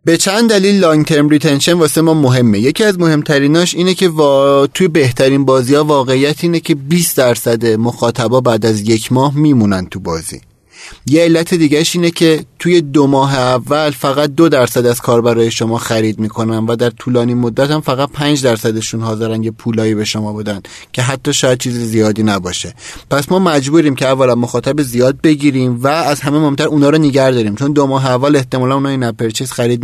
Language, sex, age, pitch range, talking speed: Persian, male, 30-49, 115-155 Hz, 185 wpm